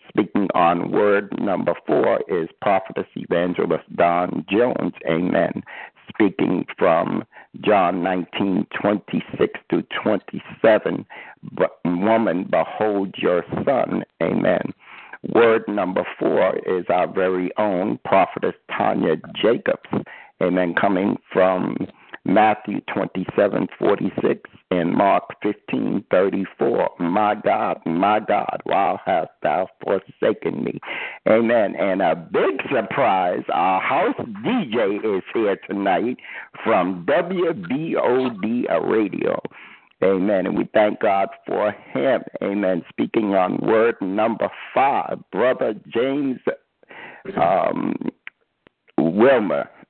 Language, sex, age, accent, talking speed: English, male, 60-79, American, 105 wpm